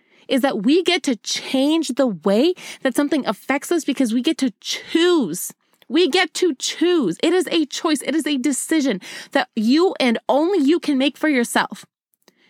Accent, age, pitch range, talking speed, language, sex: American, 20-39, 235-295 Hz, 185 wpm, English, female